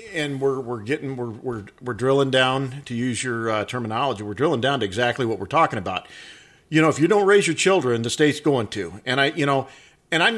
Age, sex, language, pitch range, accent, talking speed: 50-69, male, English, 125-155 Hz, American, 235 wpm